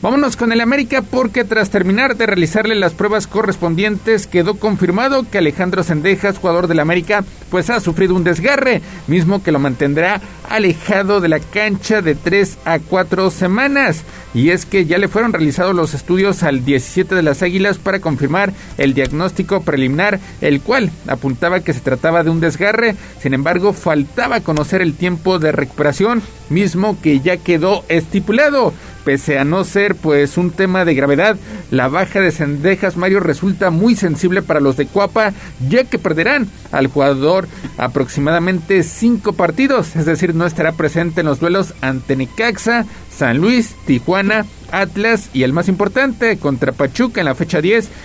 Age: 50-69